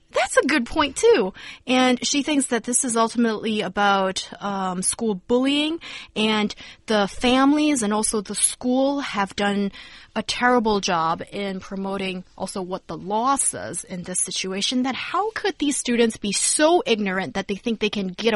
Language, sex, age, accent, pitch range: Chinese, female, 20-39, American, 195-270 Hz